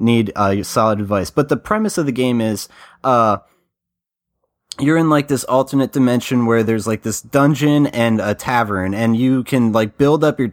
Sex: male